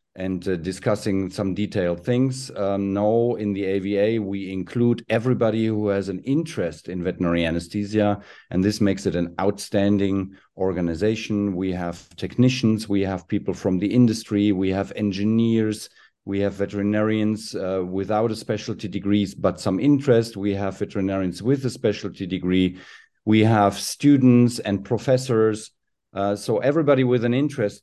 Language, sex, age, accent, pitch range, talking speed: Greek, male, 40-59, German, 100-115 Hz, 150 wpm